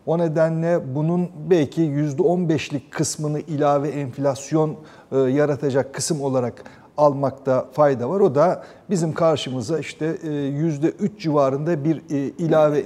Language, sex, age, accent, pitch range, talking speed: Turkish, male, 60-79, native, 140-170 Hz, 105 wpm